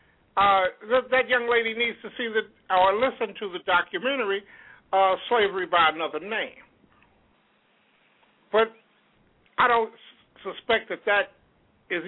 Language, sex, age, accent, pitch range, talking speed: English, male, 60-79, American, 180-235 Hz, 125 wpm